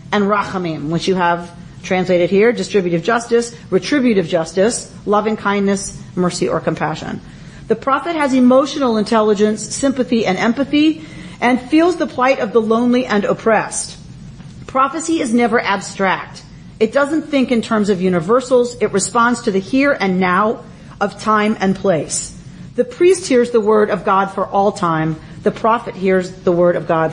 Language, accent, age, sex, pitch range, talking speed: English, American, 40-59, female, 180-250 Hz, 160 wpm